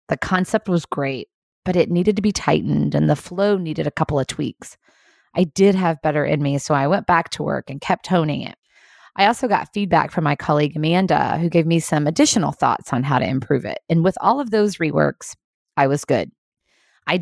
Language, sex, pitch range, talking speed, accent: English, female, 145-185 Hz, 220 wpm, American